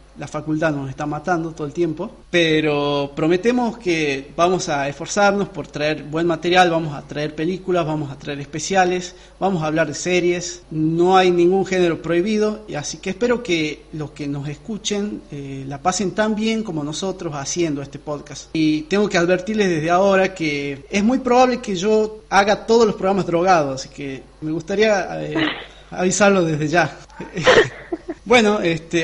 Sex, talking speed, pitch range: male, 170 wpm, 150-195 Hz